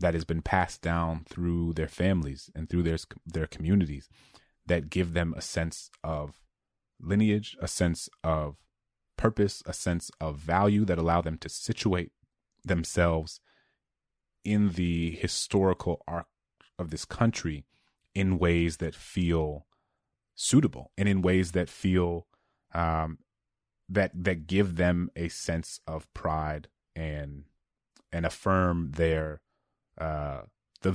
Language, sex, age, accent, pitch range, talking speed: English, male, 30-49, American, 80-90 Hz, 130 wpm